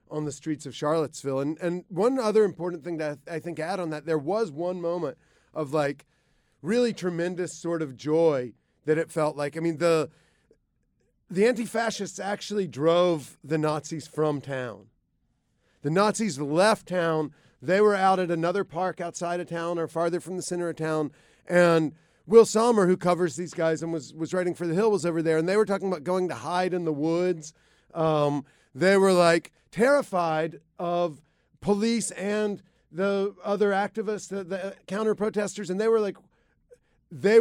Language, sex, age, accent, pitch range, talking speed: English, male, 40-59, American, 160-200 Hz, 180 wpm